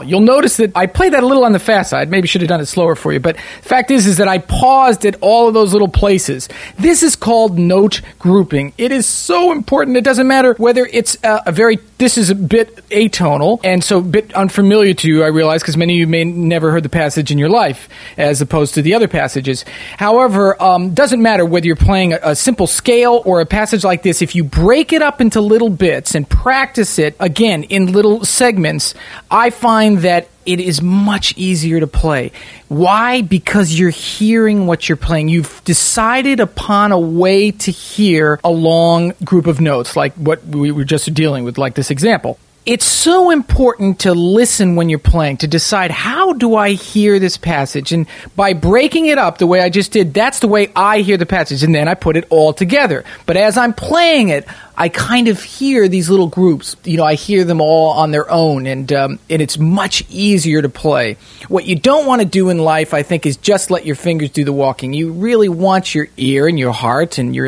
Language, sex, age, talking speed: English, male, 40-59, 220 wpm